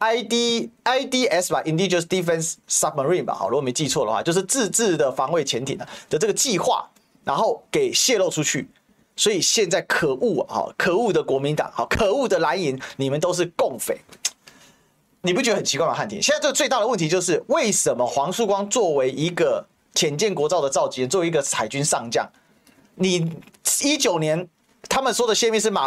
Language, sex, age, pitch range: Chinese, male, 30-49, 155-230 Hz